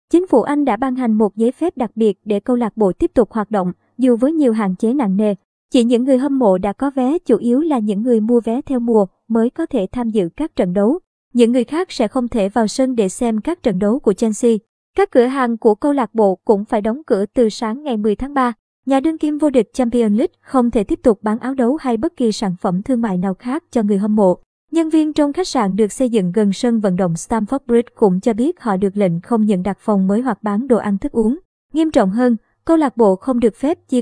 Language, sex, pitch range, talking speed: Vietnamese, male, 215-260 Hz, 265 wpm